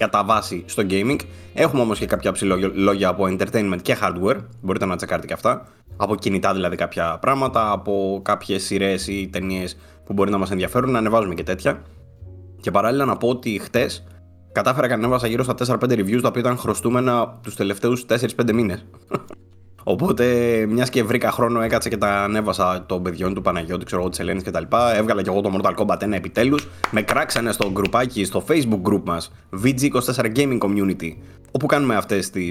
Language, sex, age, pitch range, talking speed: Greek, male, 20-39, 90-115 Hz, 190 wpm